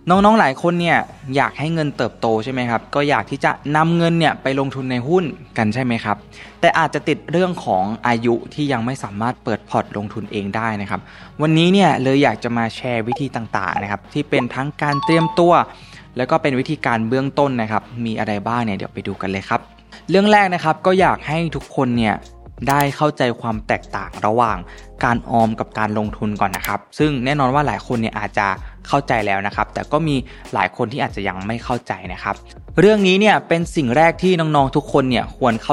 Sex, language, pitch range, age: male, Thai, 110-150 Hz, 20-39